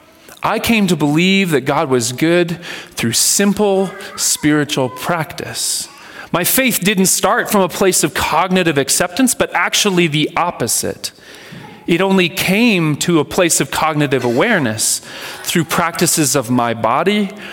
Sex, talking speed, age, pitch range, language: male, 135 wpm, 30-49, 150-195 Hz, English